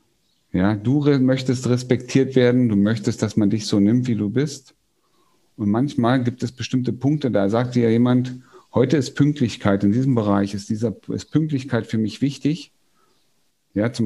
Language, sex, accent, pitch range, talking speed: German, male, German, 95-120 Hz, 180 wpm